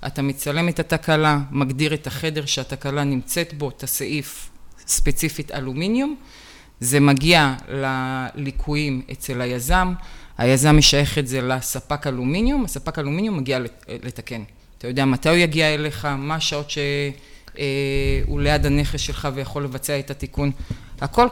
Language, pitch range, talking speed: Hebrew, 135-175 Hz, 130 wpm